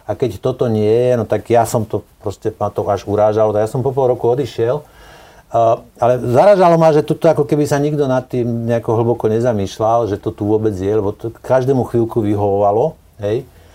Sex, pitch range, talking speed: male, 100-115 Hz, 200 wpm